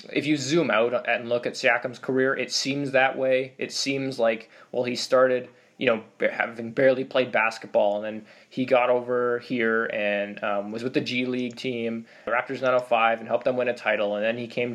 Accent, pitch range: American, 115-140 Hz